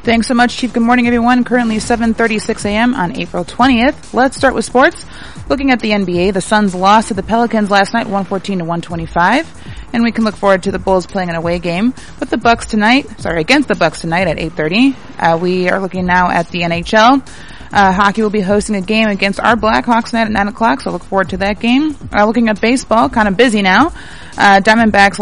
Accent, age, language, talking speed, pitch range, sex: American, 30-49, English, 220 wpm, 180-230 Hz, female